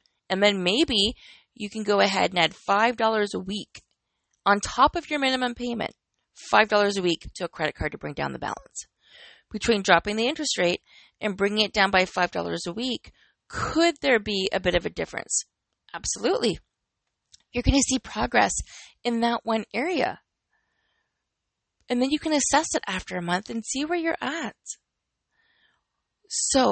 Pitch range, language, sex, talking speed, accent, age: 190-250 Hz, English, female, 170 wpm, American, 20-39